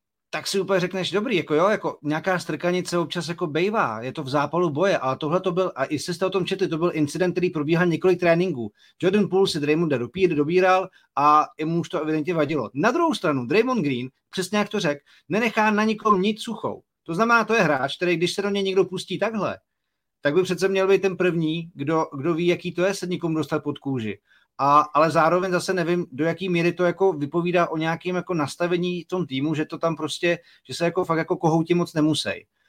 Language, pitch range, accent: Czech, 150-180 Hz, native